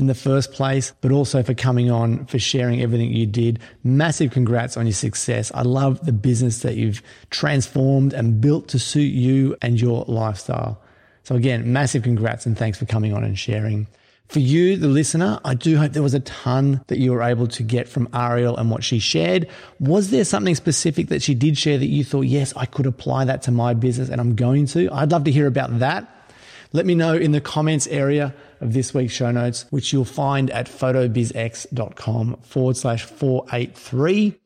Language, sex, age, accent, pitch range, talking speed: English, male, 30-49, Australian, 120-145 Hz, 205 wpm